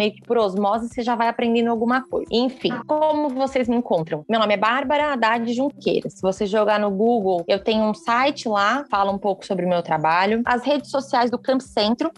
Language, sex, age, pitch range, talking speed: Portuguese, female, 20-39, 200-245 Hz, 215 wpm